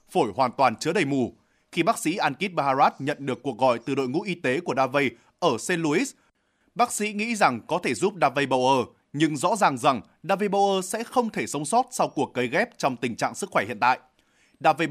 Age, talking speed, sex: 20-39, 230 wpm, male